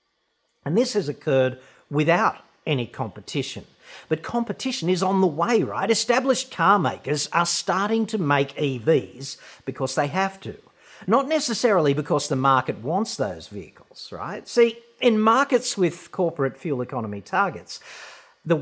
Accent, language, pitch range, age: Australian, English, 140-205 Hz, 40-59